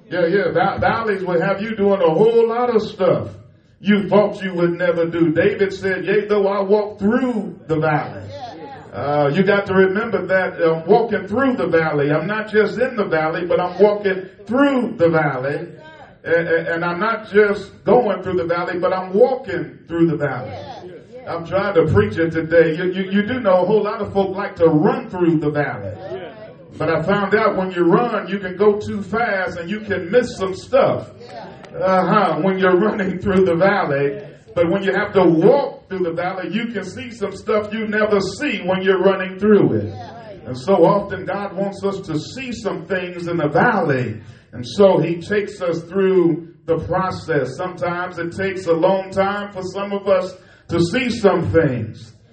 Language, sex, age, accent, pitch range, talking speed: English, male, 50-69, American, 165-205 Hz, 195 wpm